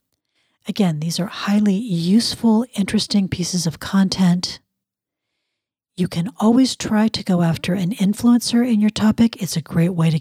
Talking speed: 155 wpm